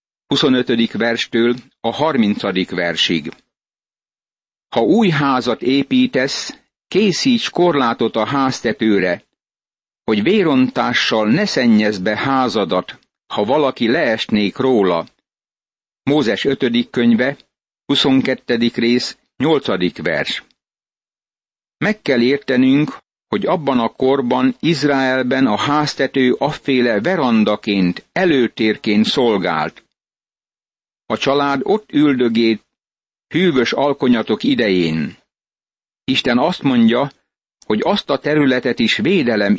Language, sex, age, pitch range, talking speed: Hungarian, male, 60-79, 110-140 Hz, 90 wpm